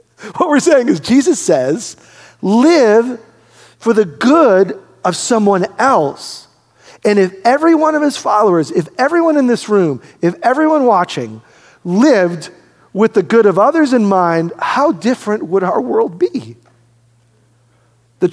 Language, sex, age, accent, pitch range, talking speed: English, male, 40-59, American, 165-240 Hz, 140 wpm